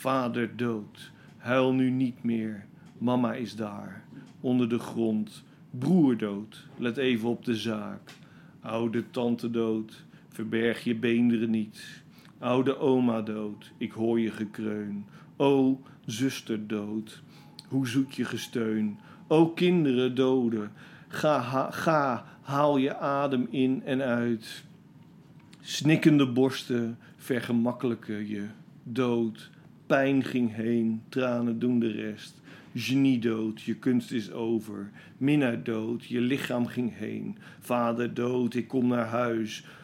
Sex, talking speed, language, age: male, 125 wpm, Dutch, 50-69